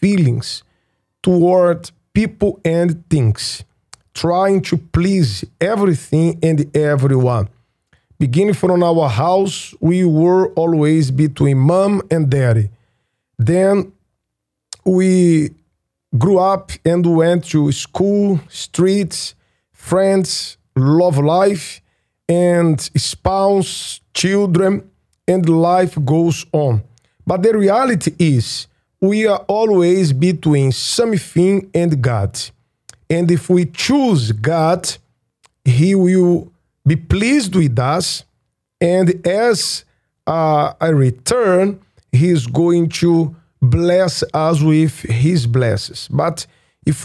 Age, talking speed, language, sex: 50-69, 100 wpm, English, male